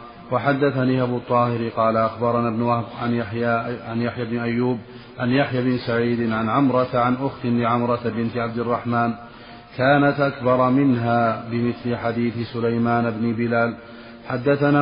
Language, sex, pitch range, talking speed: Arabic, male, 115-125 Hz, 140 wpm